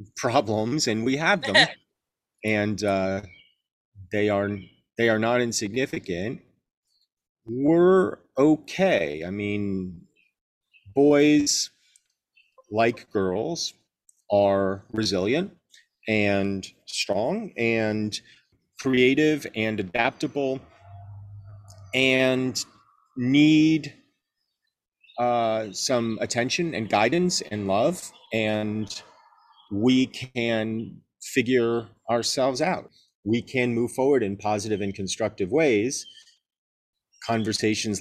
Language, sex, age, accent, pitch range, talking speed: English, male, 40-59, American, 100-130 Hz, 85 wpm